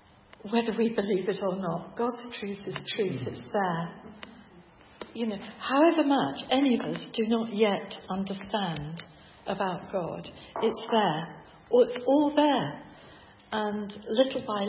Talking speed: 140 wpm